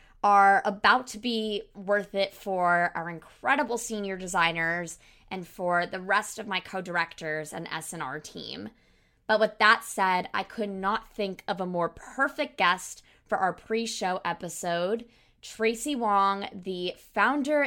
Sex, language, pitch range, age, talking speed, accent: female, English, 180-230 Hz, 20-39, 145 wpm, American